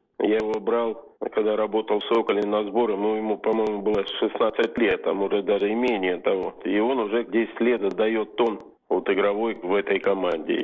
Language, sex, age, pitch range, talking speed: Russian, male, 50-69, 105-120 Hz, 185 wpm